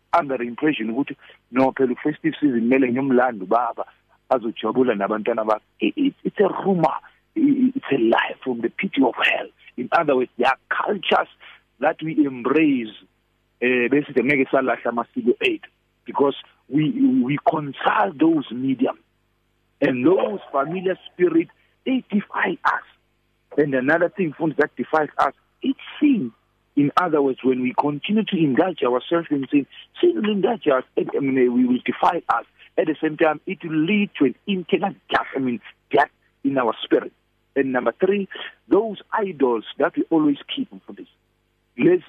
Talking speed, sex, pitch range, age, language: 125 wpm, male, 130-195 Hz, 50-69, English